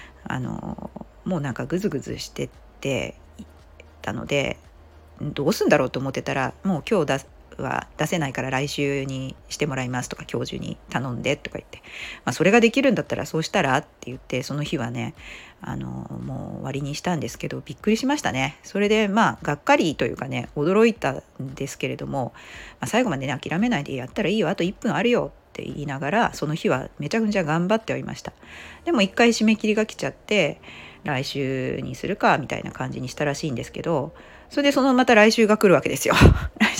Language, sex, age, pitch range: Japanese, female, 40-59, 135-220 Hz